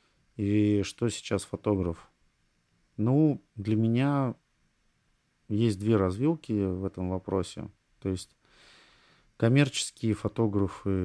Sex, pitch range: male, 95-110 Hz